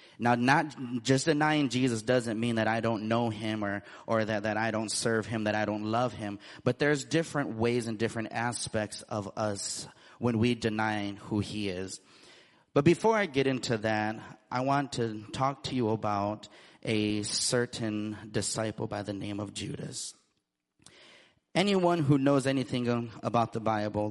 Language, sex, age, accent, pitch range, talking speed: English, male, 30-49, American, 110-130 Hz, 170 wpm